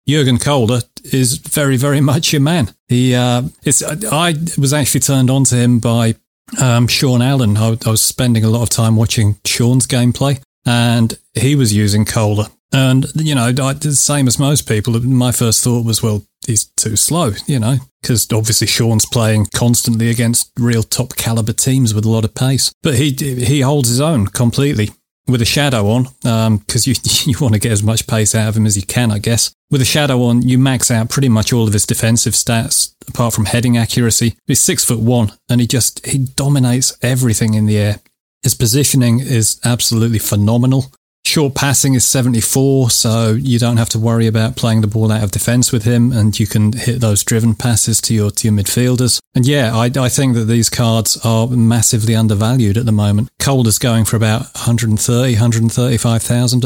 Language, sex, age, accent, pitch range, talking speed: English, male, 30-49, British, 110-130 Hz, 200 wpm